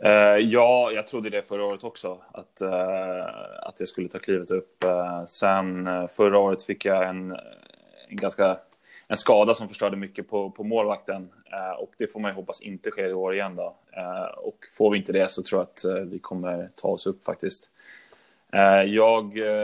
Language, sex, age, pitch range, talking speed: Swedish, male, 20-39, 95-110 Hz, 175 wpm